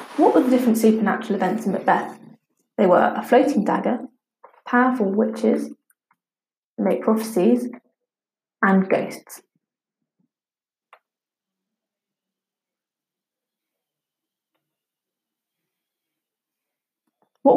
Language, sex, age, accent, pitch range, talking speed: English, female, 20-39, British, 200-235 Hz, 70 wpm